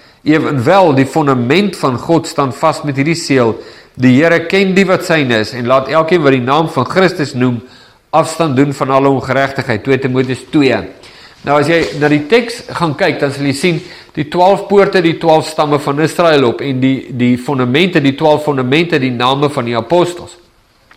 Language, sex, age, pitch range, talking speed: English, male, 50-69, 140-180 Hz, 190 wpm